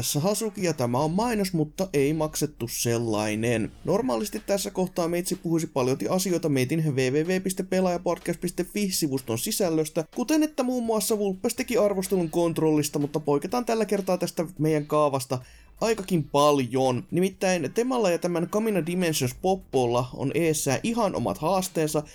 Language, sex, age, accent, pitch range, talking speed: Finnish, male, 20-39, native, 135-195 Hz, 125 wpm